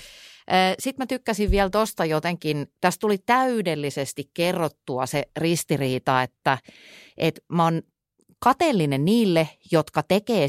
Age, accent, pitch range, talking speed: 30-49, native, 135-195 Hz, 115 wpm